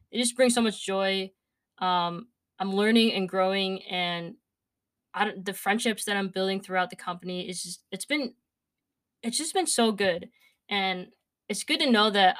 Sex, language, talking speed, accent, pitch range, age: female, English, 170 wpm, American, 185-220 Hz, 20-39